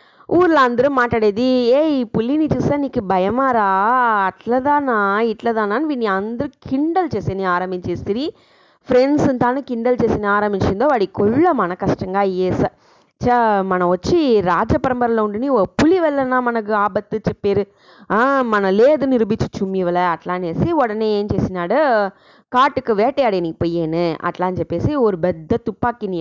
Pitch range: 190-260 Hz